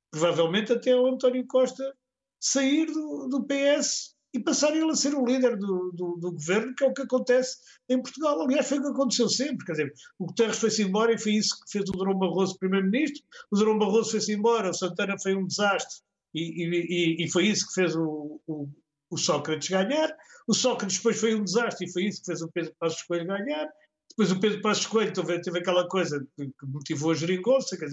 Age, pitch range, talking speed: 50-69, 165-235 Hz, 210 wpm